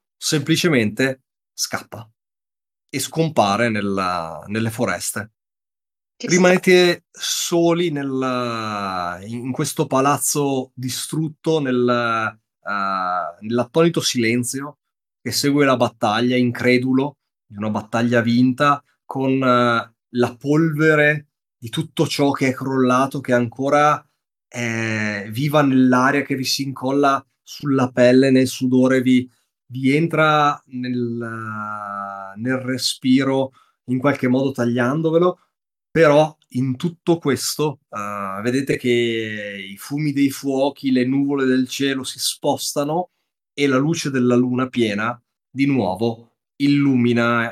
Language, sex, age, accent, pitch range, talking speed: Italian, male, 30-49, native, 120-145 Hz, 110 wpm